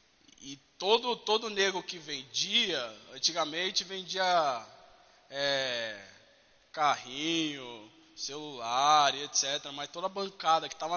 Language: Portuguese